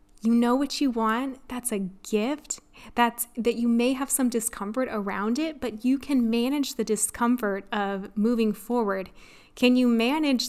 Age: 20-39